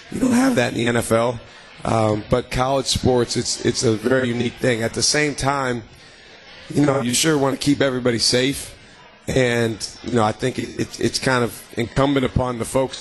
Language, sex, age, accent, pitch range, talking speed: English, male, 30-49, American, 120-140 Hz, 195 wpm